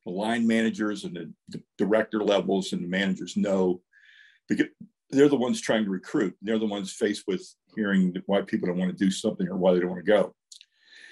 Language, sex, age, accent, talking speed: English, male, 50-69, American, 195 wpm